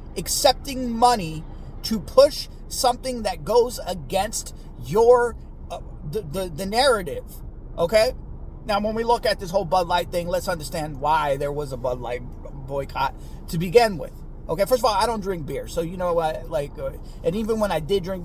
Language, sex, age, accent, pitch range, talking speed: English, male, 30-49, American, 160-225 Hz, 185 wpm